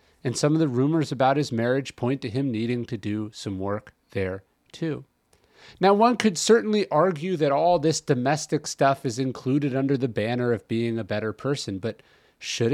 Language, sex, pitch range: English, male, 125-170 Hz